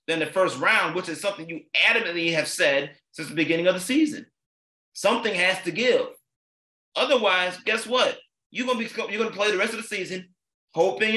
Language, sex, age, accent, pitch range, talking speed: English, male, 30-49, American, 170-240 Hz, 195 wpm